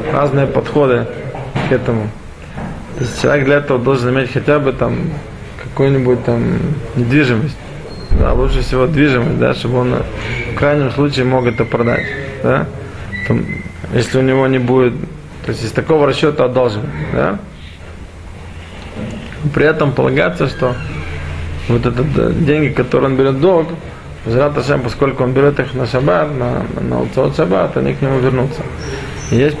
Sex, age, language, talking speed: male, 20-39, Russian, 150 wpm